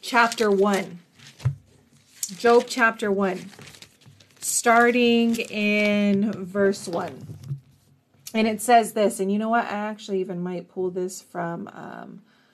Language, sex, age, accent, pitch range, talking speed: English, female, 30-49, American, 190-240 Hz, 120 wpm